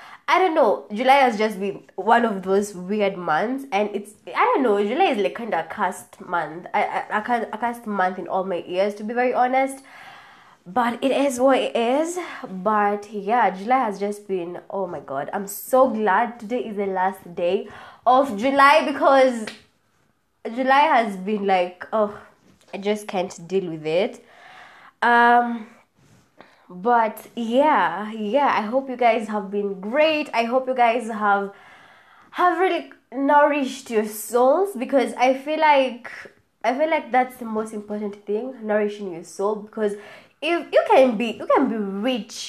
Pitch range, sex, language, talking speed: 205-265 Hz, female, English, 170 wpm